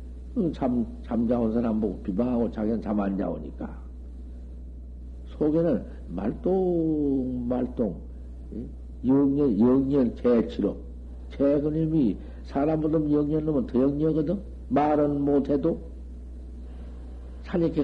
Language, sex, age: Korean, male, 60-79